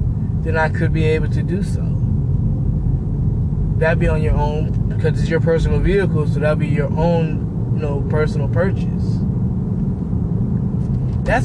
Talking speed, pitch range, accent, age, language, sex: 145 wpm, 135-160 Hz, American, 20-39, English, male